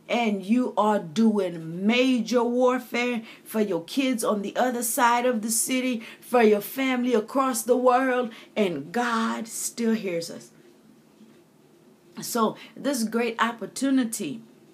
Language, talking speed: English, 125 wpm